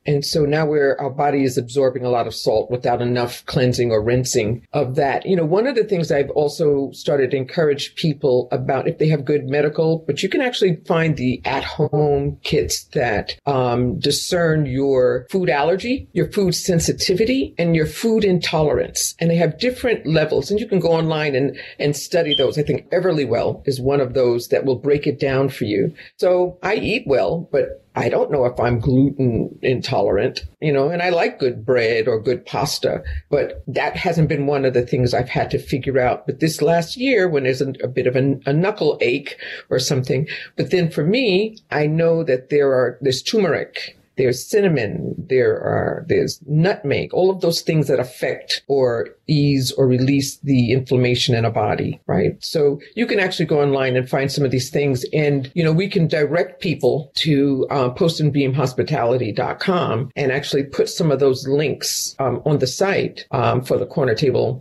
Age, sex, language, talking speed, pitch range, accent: 50-69, female, English, 195 wpm, 135-175 Hz, American